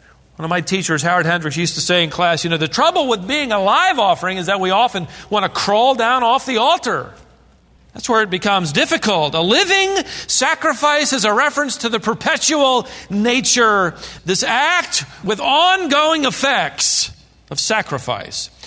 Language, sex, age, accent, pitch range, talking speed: English, male, 40-59, American, 165-270 Hz, 170 wpm